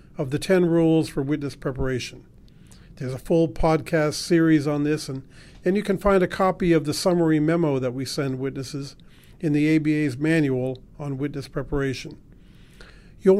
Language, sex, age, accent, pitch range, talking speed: English, male, 50-69, American, 140-175 Hz, 165 wpm